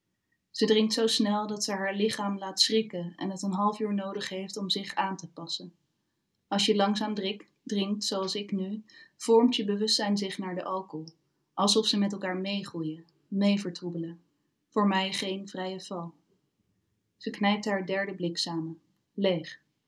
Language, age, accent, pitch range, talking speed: Dutch, 30-49, Dutch, 180-210 Hz, 165 wpm